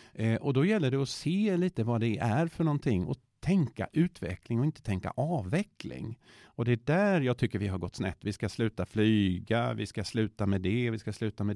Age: 50-69